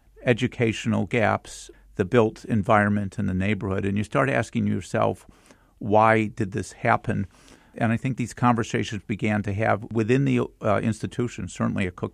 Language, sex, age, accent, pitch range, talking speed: English, male, 50-69, American, 105-125 Hz, 160 wpm